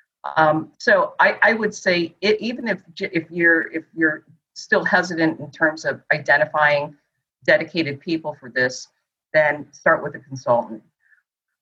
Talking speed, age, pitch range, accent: 145 wpm, 50-69, 145-175 Hz, American